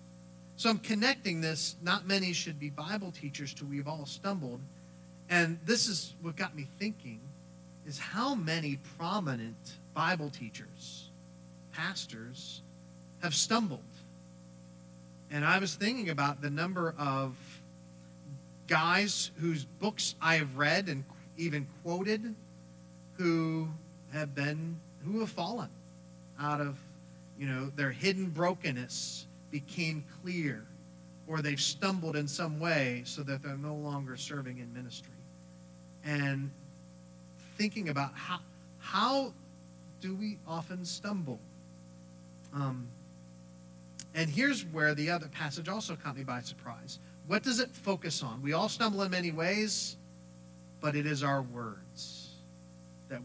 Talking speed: 130 wpm